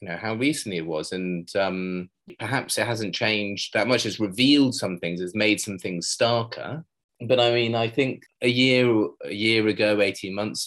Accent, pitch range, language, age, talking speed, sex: British, 90-110 Hz, English, 20-39, 195 wpm, male